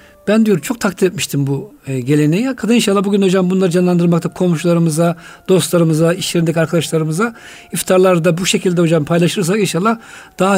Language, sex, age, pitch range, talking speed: Turkish, male, 50-69, 150-200 Hz, 130 wpm